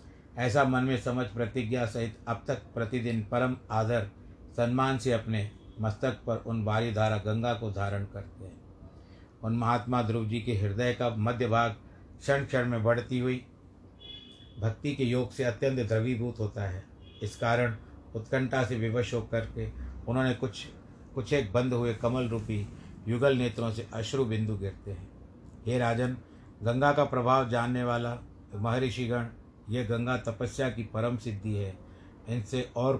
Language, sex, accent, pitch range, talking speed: Hindi, male, native, 105-125 Hz, 155 wpm